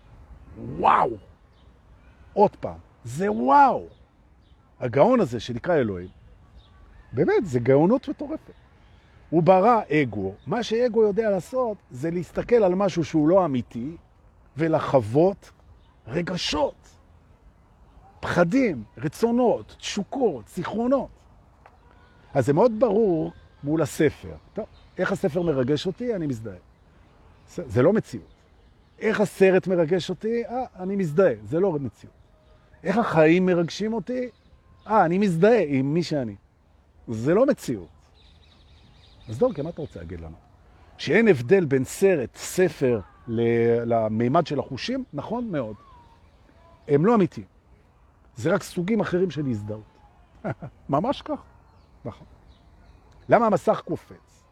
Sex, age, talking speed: male, 50-69, 100 wpm